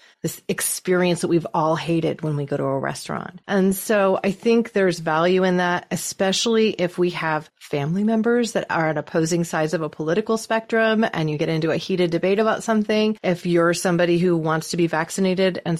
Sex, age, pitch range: female, 30-49, 160-210 Hz